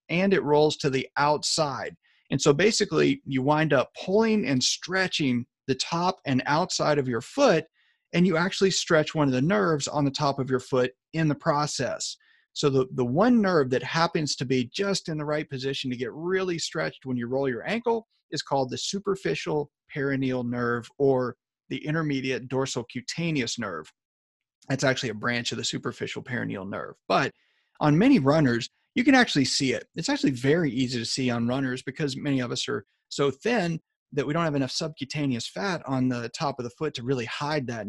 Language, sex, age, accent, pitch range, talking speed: English, male, 40-59, American, 130-170 Hz, 195 wpm